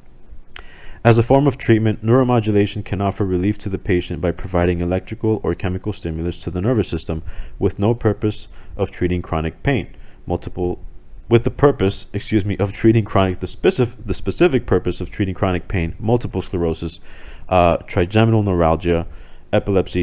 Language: English